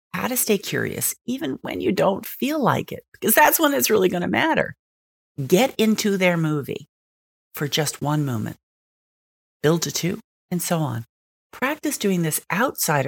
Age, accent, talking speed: 40-59, American, 170 wpm